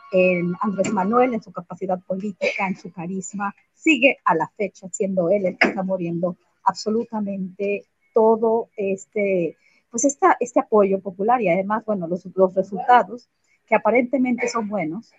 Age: 40-59